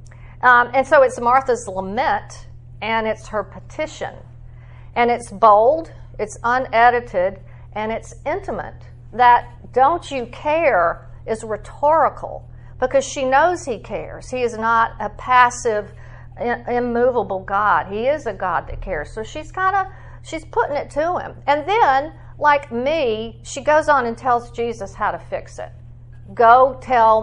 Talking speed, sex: 150 wpm, female